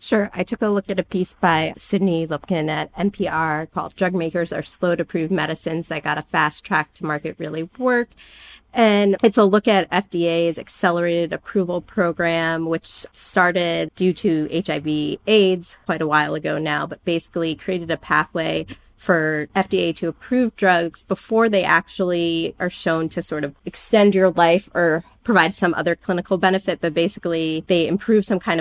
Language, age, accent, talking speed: English, 30-49, American, 175 wpm